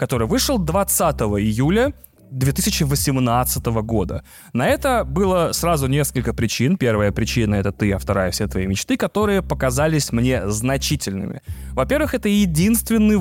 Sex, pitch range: male, 120-175 Hz